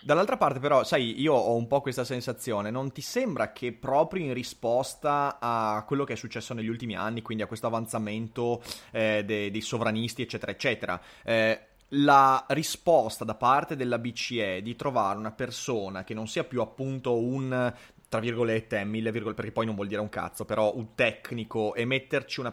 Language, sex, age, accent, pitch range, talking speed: Italian, male, 30-49, native, 110-135 Hz, 185 wpm